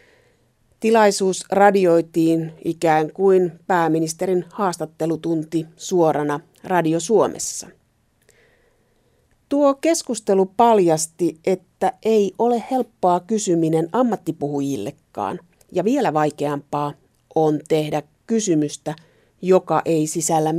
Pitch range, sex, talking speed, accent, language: 155-185 Hz, female, 80 wpm, native, Finnish